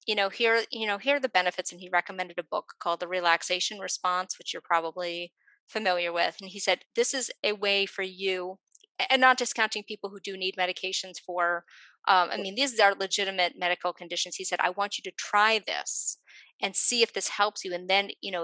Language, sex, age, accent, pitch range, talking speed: English, female, 30-49, American, 175-210 Hz, 220 wpm